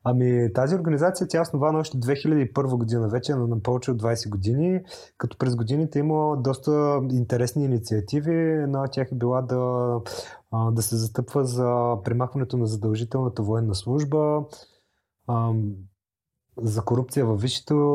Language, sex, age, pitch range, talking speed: Bulgarian, male, 30-49, 115-145 Hz, 135 wpm